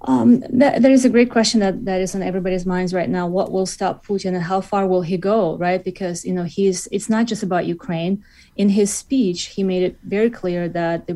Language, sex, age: English, female, 30-49